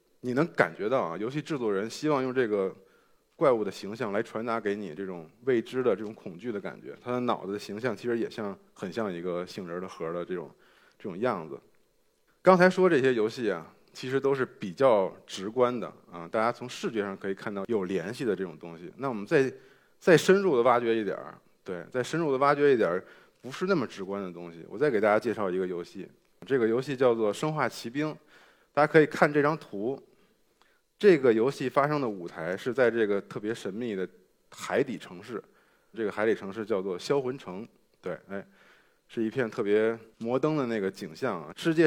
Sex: male